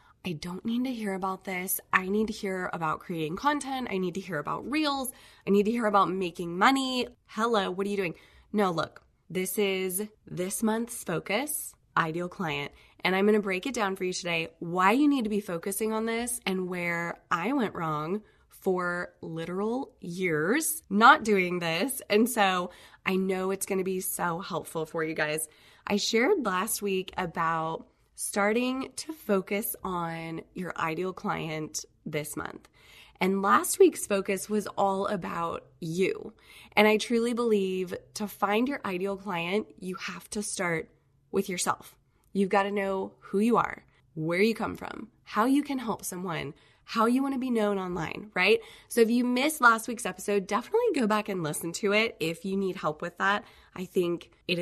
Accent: American